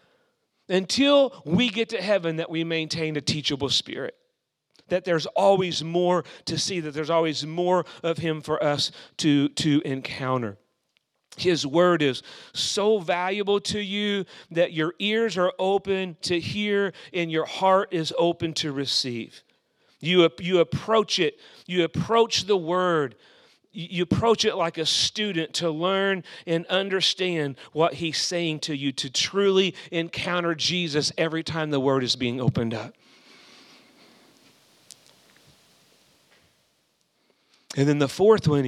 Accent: American